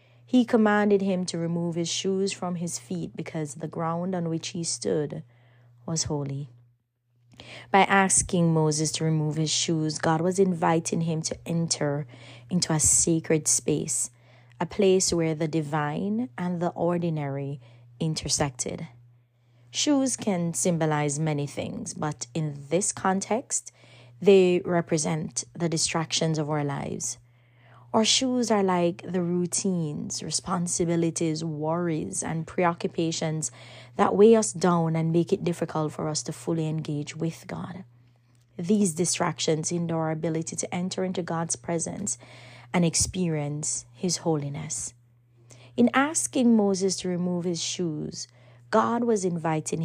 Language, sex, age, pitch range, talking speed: English, female, 20-39, 145-180 Hz, 130 wpm